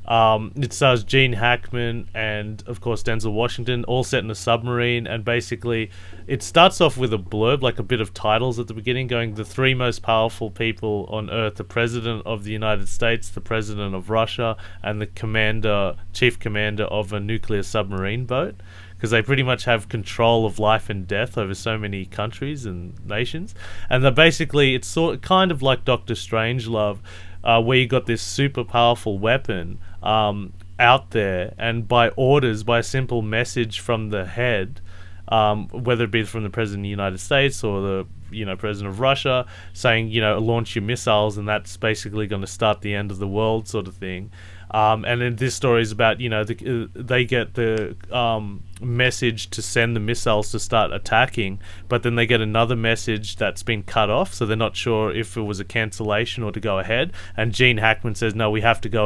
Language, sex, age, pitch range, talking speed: English, male, 30-49, 105-120 Hz, 200 wpm